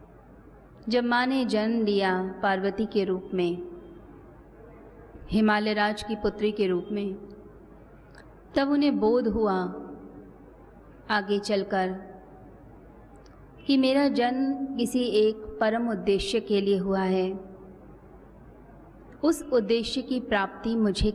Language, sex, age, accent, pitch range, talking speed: Hindi, female, 30-49, native, 195-235 Hz, 110 wpm